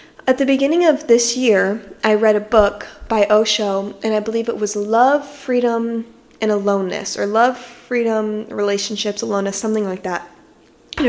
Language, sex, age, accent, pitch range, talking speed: English, female, 10-29, American, 210-250 Hz, 160 wpm